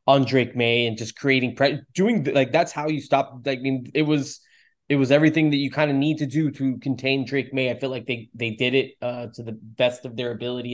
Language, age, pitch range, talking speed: English, 20-39, 120-140 Hz, 245 wpm